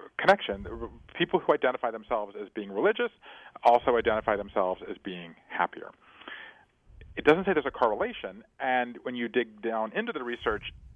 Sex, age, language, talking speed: male, 40-59, English, 155 wpm